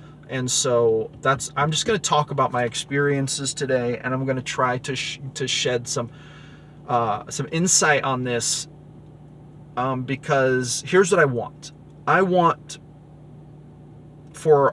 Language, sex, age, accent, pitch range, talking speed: English, male, 30-49, American, 130-150 Hz, 145 wpm